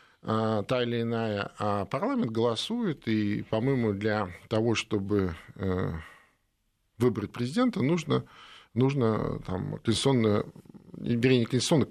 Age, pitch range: 50-69, 105-125 Hz